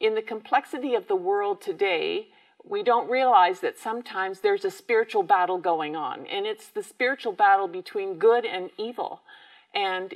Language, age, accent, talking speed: English, 50-69, American, 165 wpm